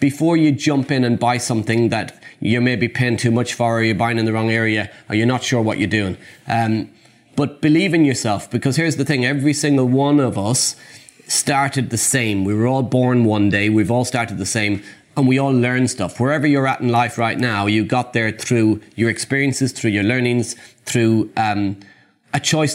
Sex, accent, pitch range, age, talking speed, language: male, Irish, 110-130 Hz, 30-49, 215 wpm, English